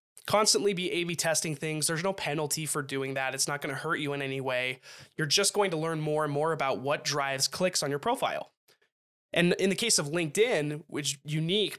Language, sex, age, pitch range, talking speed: English, male, 20-39, 145-180 Hz, 220 wpm